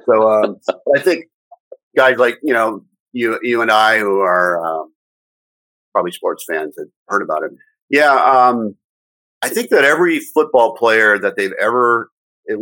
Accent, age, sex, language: American, 50-69, male, English